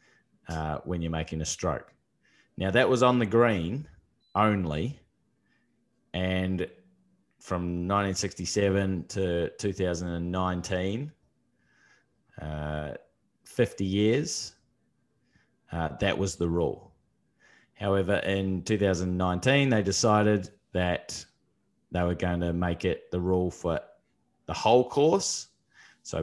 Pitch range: 85-105 Hz